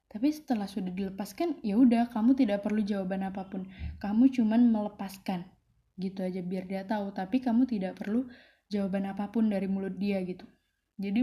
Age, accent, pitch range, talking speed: 10-29, native, 195-245 Hz, 160 wpm